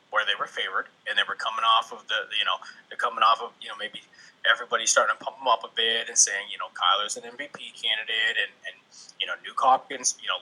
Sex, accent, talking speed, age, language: male, American, 255 wpm, 20-39, English